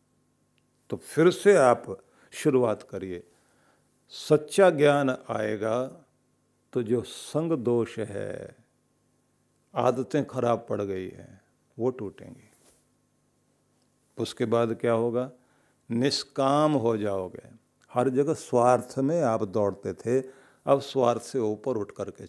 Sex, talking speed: male, 110 wpm